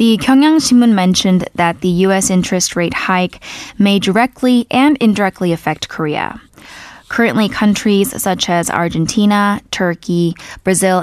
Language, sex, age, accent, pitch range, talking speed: English, female, 10-29, American, 170-210 Hz, 120 wpm